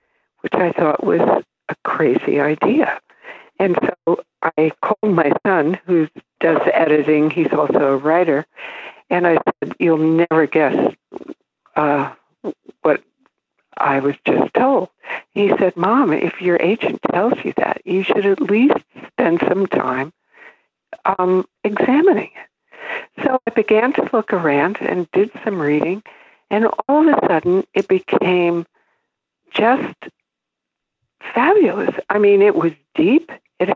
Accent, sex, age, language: American, female, 60-79, English